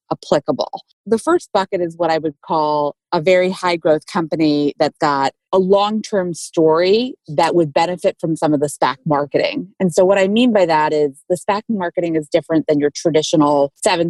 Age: 30-49